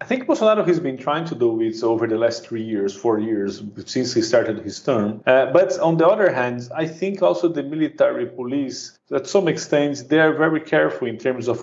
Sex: male